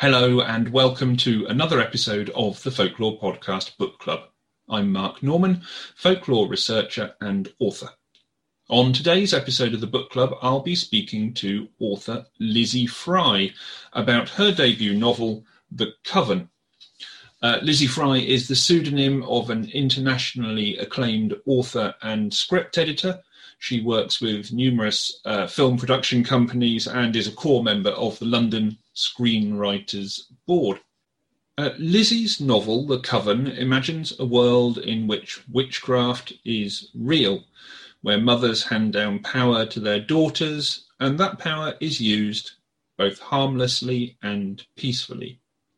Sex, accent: male, British